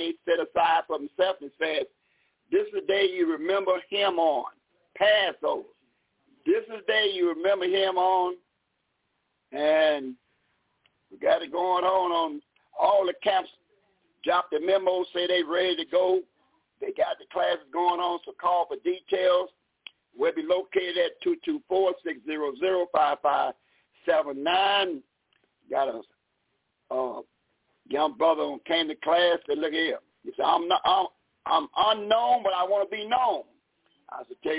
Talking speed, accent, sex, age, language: 160 wpm, American, male, 50-69, English